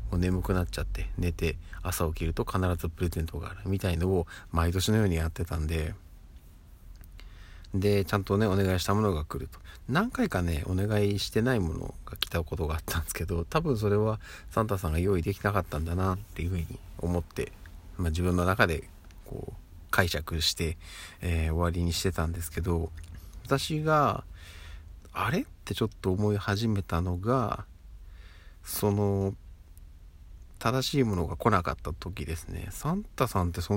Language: Japanese